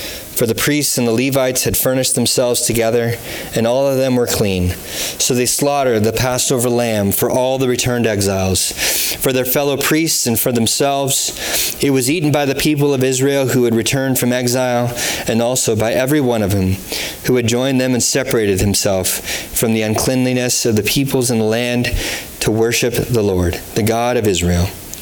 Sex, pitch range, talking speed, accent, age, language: male, 105-130 Hz, 185 wpm, American, 30-49, English